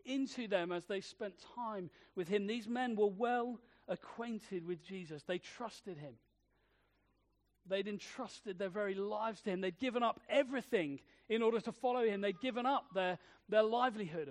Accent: British